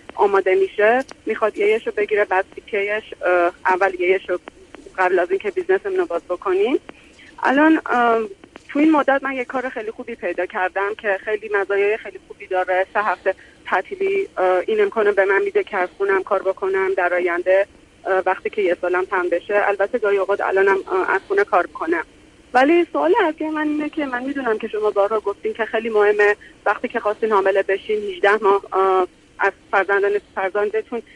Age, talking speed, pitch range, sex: 30-49, 170 wpm, 195-285 Hz, female